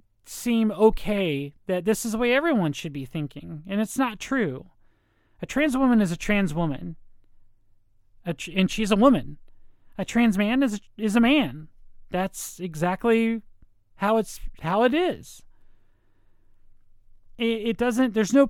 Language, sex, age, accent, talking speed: English, male, 30-49, American, 150 wpm